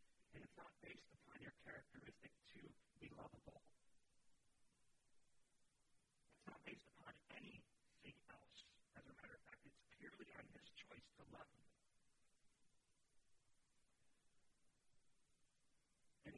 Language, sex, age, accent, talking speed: English, male, 50-69, American, 110 wpm